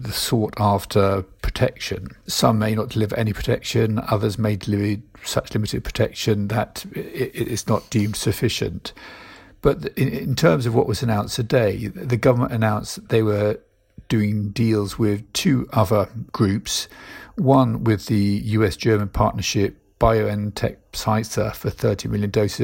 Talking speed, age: 135 wpm, 50-69